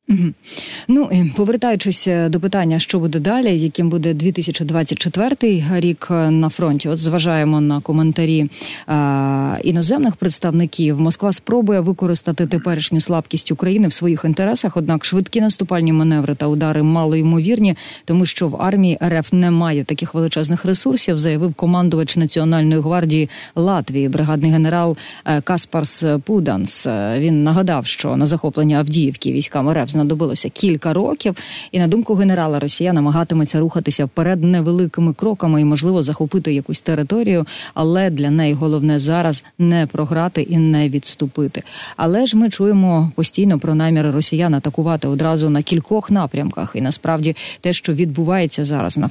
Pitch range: 155-180 Hz